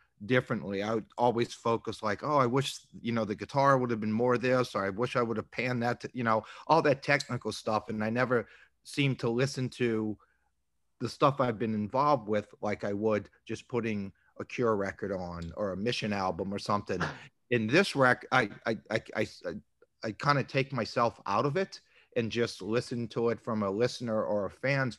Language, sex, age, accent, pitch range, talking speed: English, male, 40-59, American, 105-125 Hz, 210 wpm